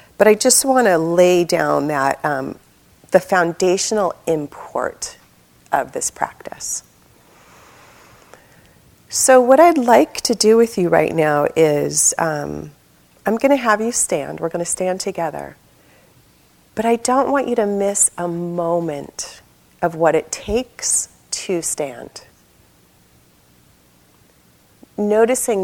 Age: 30-49